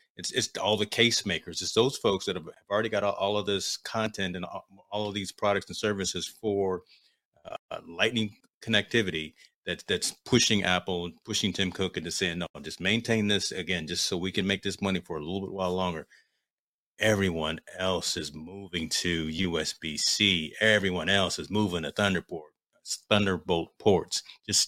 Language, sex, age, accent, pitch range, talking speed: English, male, 30-49, American, 90-105 Hz, 180 wpm